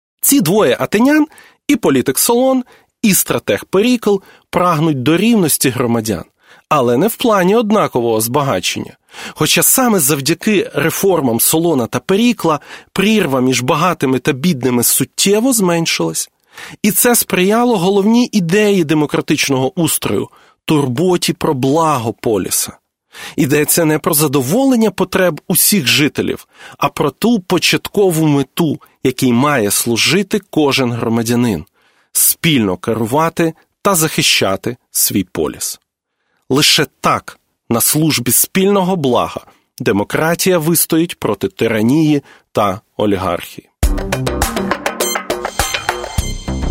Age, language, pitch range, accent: 30-49, Ukrainian, 130-200 Hz, native